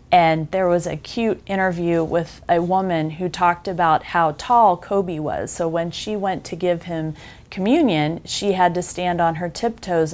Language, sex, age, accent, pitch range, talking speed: English, female, 30-49, American, 160-185 Hz, 185 wpm